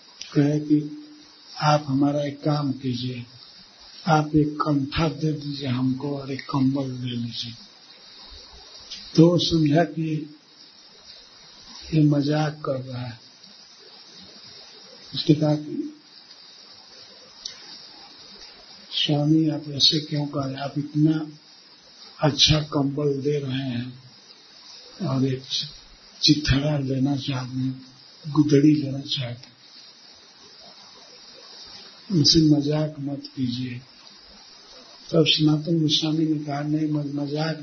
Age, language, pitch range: 50-69, Hindi, 135-150 Hz